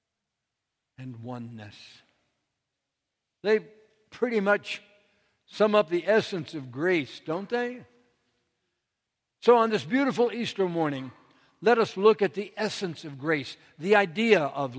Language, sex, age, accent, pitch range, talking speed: English, male, 60-79, American, 135-195 Hz, 120 wpm